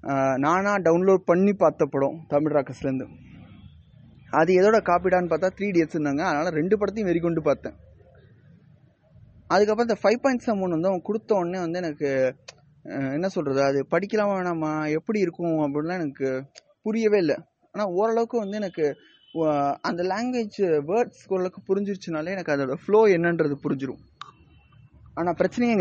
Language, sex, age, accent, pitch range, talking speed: Tamil, male, 20-39, native, 150-210 Hz, 130 wpm